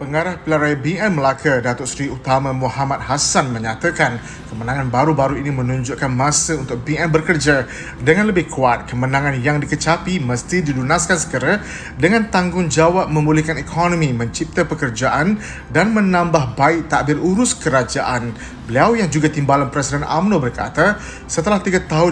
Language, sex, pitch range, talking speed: Malay, male, 130-175 Hz, 135 wpm